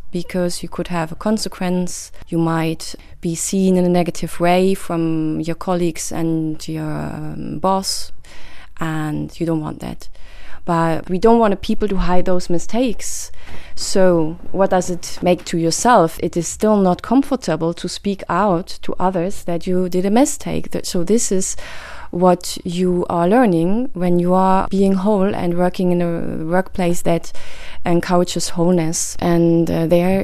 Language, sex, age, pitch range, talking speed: Czech, female, 20-39, 170-195 Hz, 160 wpm